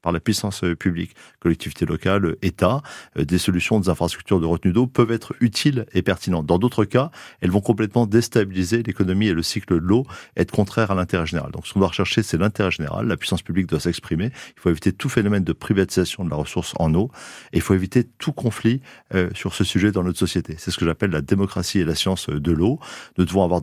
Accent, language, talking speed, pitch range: French, French, 230 wpm, 85-105 Hz